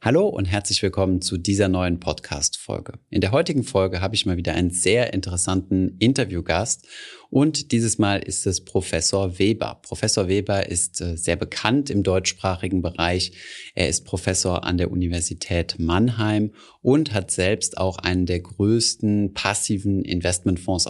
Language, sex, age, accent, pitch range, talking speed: German, male, 30-49, German, 90-105 Hz, 145 wpm